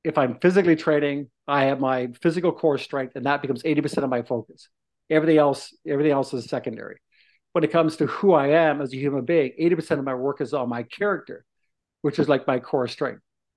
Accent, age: American, 50-69